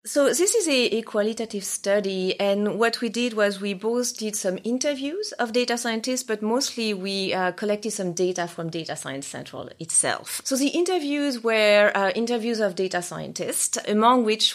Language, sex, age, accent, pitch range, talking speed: English, female, 30-49, French, 185-240 Hz, 175 wpm